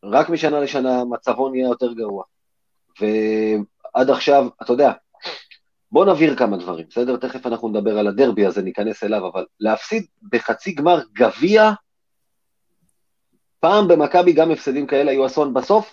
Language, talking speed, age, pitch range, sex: Hebrew, 140 wpm, 30-49, 125-170 Hz, male